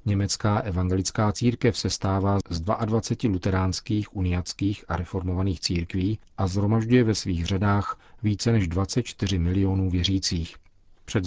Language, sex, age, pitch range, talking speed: Czech, male, 40-59, 90-110 Hz, 120 wpm